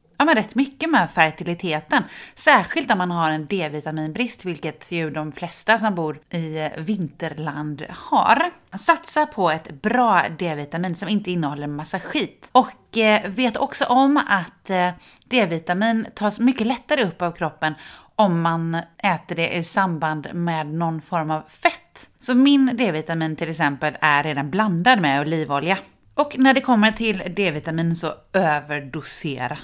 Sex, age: female, 30-49